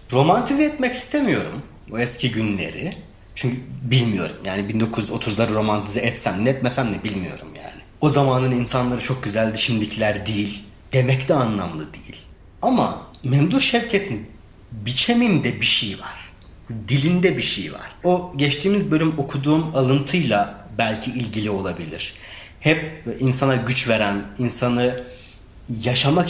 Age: 30-49